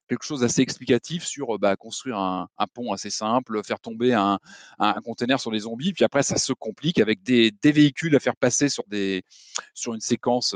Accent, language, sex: French, French, male